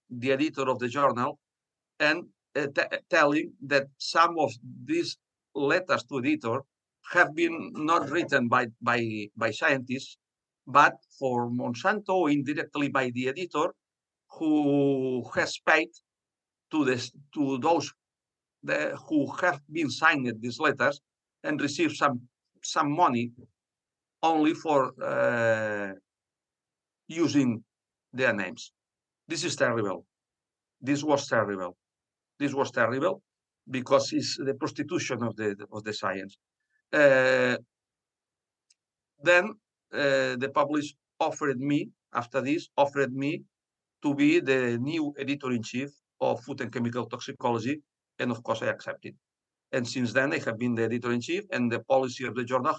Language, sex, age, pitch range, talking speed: English, male, 50-69, 125-155 Hz, 130 wpm